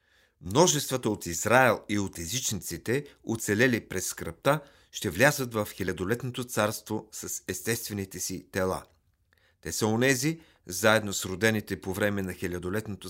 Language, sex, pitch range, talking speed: Bulgarian, male, 95-125 Hz, 130 wpm